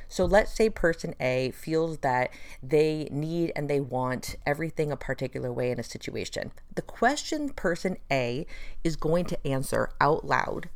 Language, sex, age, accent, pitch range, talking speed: English, female, 30-49, American, 135-170 Hz, 160 wpm